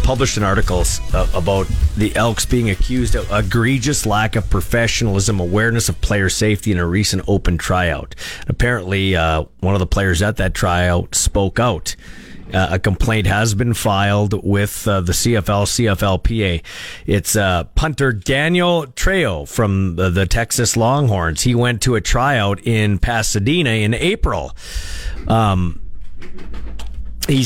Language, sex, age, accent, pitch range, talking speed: English, male, 40-59, American, 95-125 Hz, 140 wpm